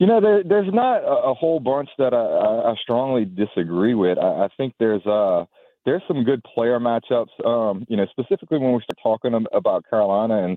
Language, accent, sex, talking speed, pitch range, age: English, American, male, 200 wpm, 90-120 Hz, 30-49